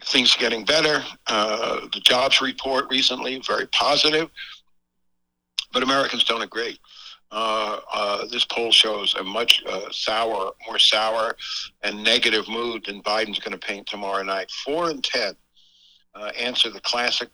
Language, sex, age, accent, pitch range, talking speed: English, male, 60-79, American, 95-120 Hz, 150 wpm